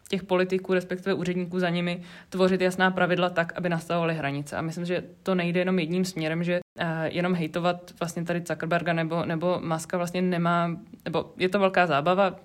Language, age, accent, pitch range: Czech, 20-39, native, 155-185 Hz